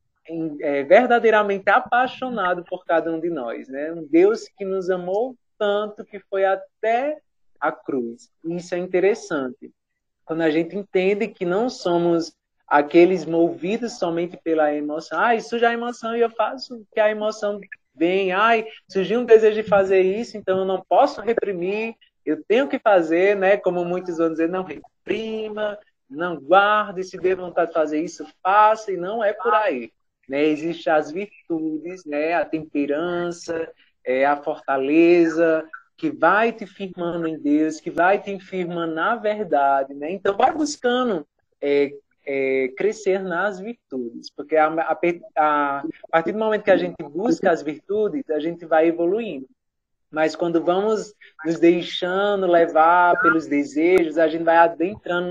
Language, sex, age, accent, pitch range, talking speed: Portuguese, male, 20-39, Brazilian, 160-210 Hz, 155 wpm